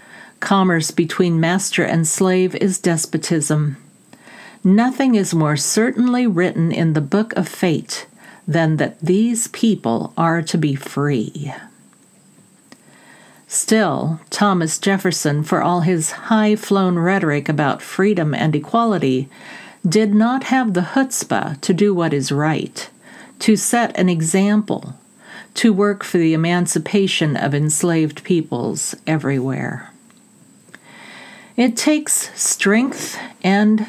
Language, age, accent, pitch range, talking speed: English, 50-69, American, 160-215 Hz, 115 wpm